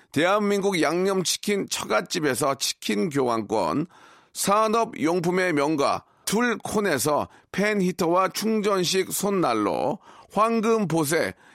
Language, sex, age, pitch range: Korean, male, 40-59, 160-205 Hz